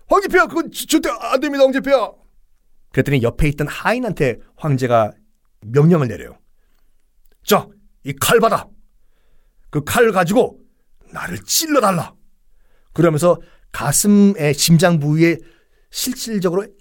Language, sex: Korean, male